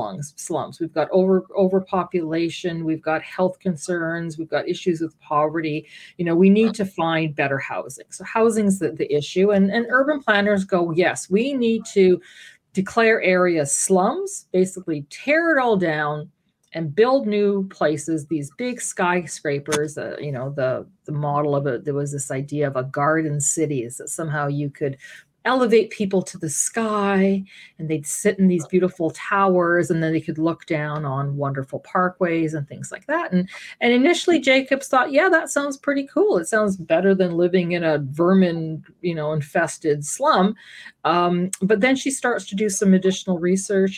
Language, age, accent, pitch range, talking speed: English, 40-59, American, 160-205 Hz, 175 wpm